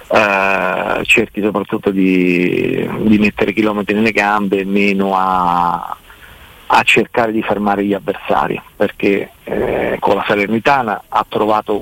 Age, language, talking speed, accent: 40-59, Italian, 115 wpm, native